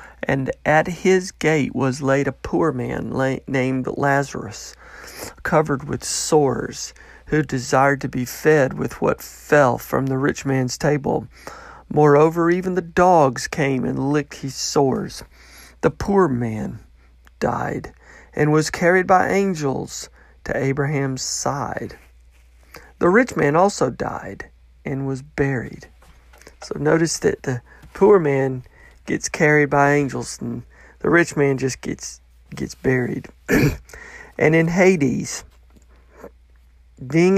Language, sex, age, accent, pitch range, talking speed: English, male, 40-59, American, 125-155 Hz, 125 wpm